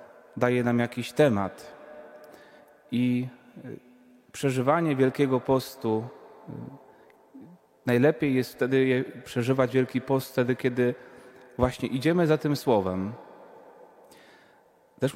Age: 30-49